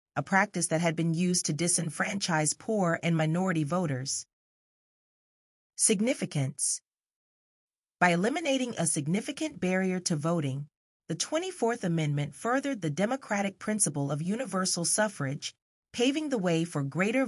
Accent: American